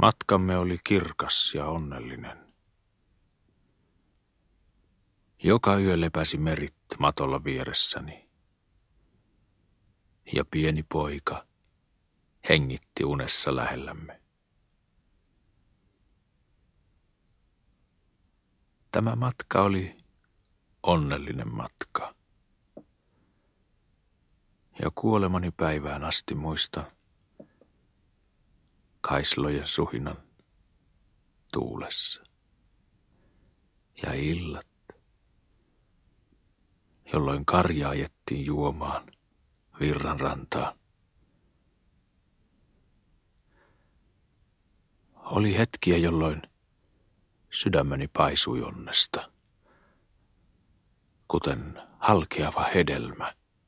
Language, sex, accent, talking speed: Finnish, male, native, 50 wpm